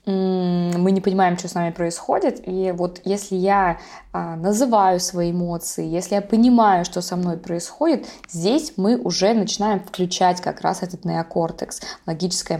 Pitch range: 175-210 Hz